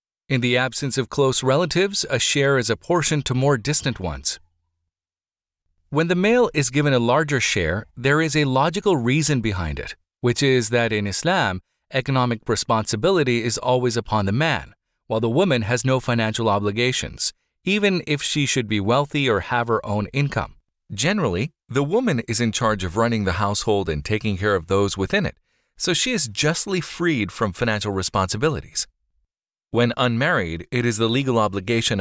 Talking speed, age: 170 wpm, 40-59